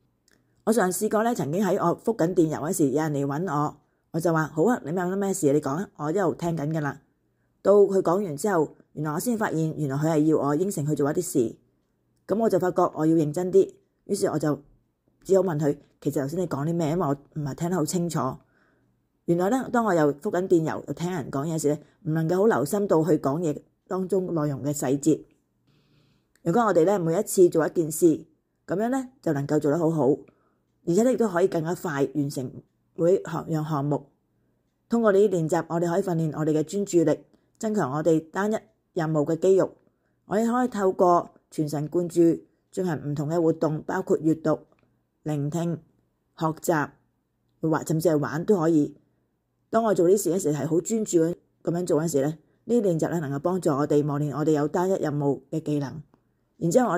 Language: Chinese